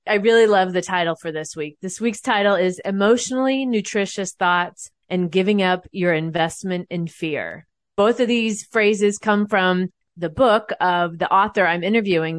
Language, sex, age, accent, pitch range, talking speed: English, female, 30-49, American, 180-220 Hz, 170 wpm